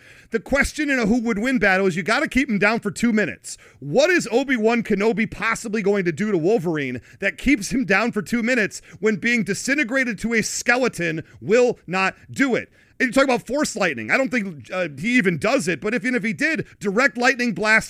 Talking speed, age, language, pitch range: 230 wpm, 40-59, English, 180-235 Hz